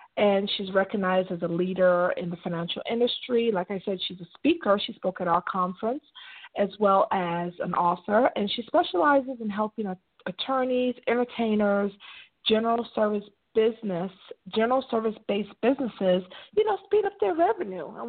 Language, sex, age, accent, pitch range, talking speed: English, female, 40-59, American, 195-255 Hz, 155 wpm